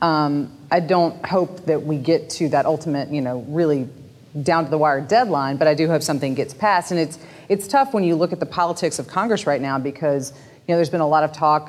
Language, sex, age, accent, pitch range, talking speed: English, female, 30-49, American, 145-170 Hz, 245 wpm